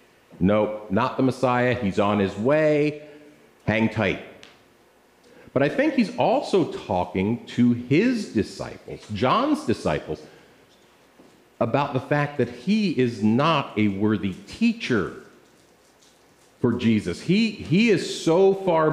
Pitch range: 110-155 Hz